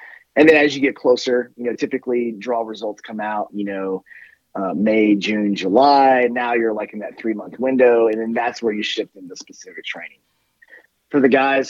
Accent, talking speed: American, 200 wpm